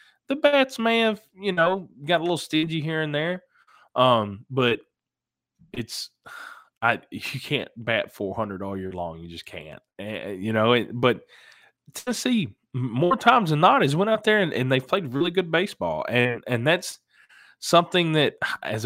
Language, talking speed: English, 175 wpm